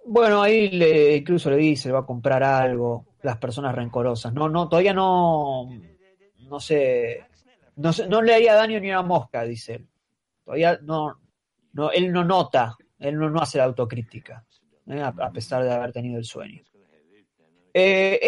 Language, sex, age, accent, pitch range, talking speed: Spanish, male, 30-49, Argentinian, 130-190 Hz, 170 wpm